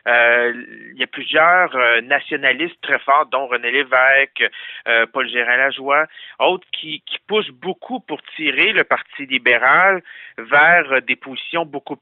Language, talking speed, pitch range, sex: French, 145 wpm, 125-165 Hz, male